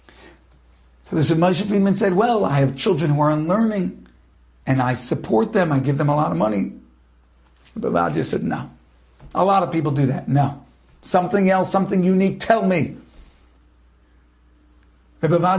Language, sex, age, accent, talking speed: English, male, 50-69, American, 155 wpm